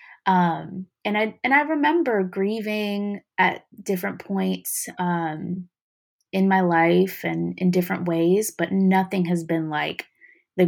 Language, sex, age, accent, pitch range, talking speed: English, female, 20-39, American, 175-210 Hz, 135 wpm